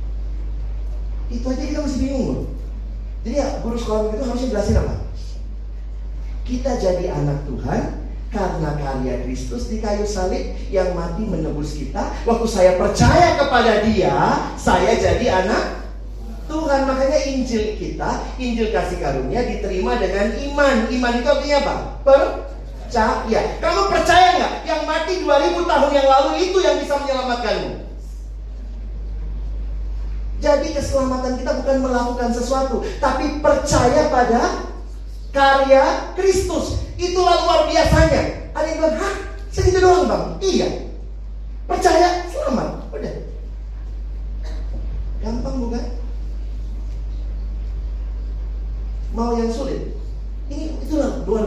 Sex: male